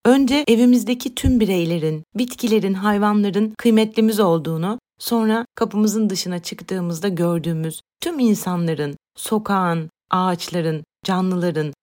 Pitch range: 180-235 Hz